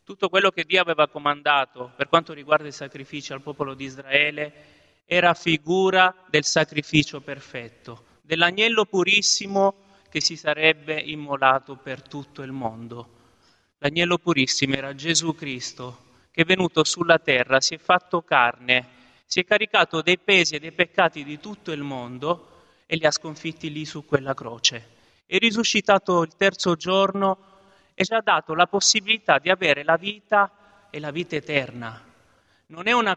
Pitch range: 140-185 Hz